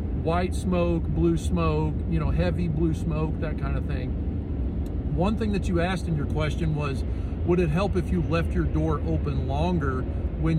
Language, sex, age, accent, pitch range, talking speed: English, male, 40-59, American, 75-85 Hz, 185 wpm